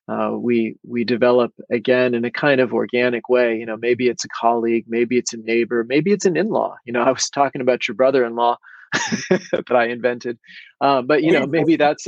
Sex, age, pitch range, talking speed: male, 30-49, 120-160 Hz, 210 wpm